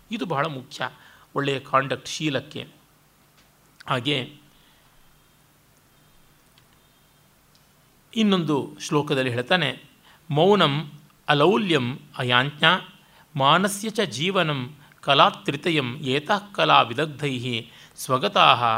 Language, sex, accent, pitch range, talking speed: Kannada, male, native, 130-175 Hz, 60 wpm